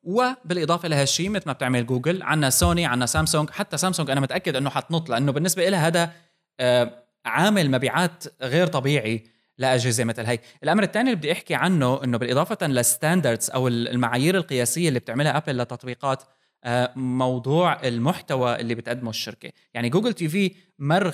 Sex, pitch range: male, 125-165 Hz